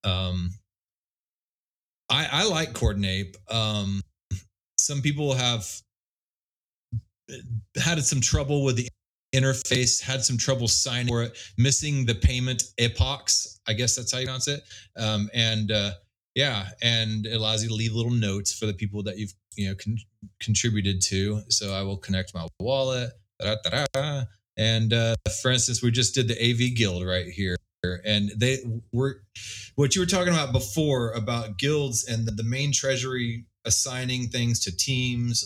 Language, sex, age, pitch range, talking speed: English, male, 30-49, 100-125 Hz, 155 wpm